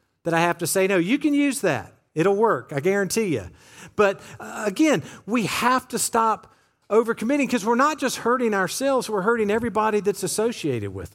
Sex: male